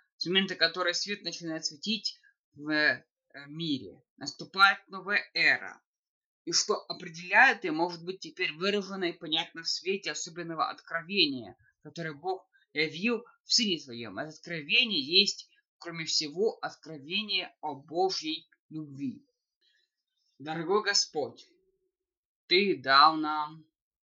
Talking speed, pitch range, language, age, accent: 110 wpm, 135-195 Hz, Russian, 20-39, native